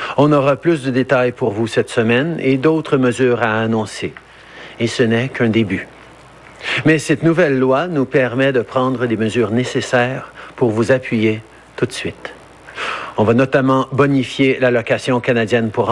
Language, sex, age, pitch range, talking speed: French, male, 50-69, 120-145 Hz, 160 wpm